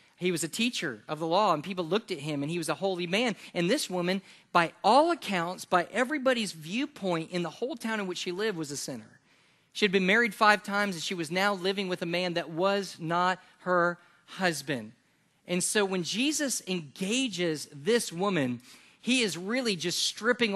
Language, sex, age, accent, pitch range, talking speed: English, male, 40-59, American, 170-220 Hz, 200 wpm